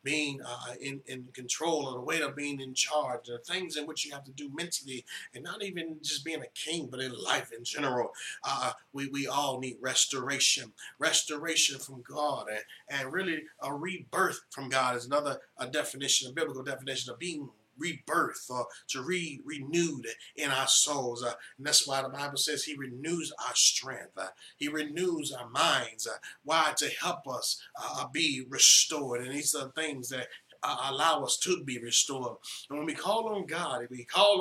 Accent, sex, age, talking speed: American, male, 30-49, 190 wpm